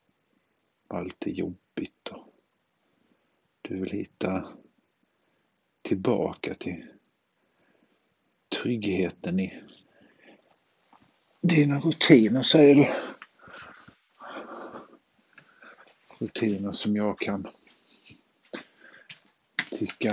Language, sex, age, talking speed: Swedish, male, 50-69, 60 wpm